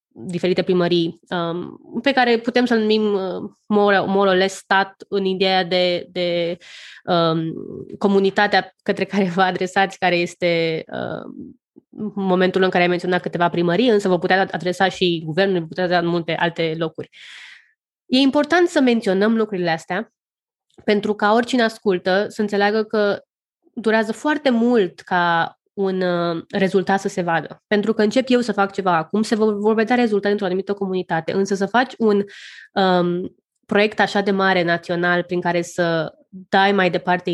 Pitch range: 180-215 Hz